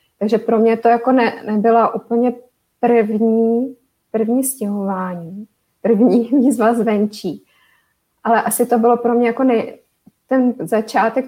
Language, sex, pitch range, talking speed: Czech, female, 205-230 Hz, 130 wpm